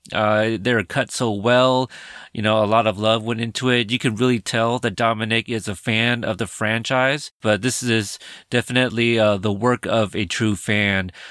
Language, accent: English, American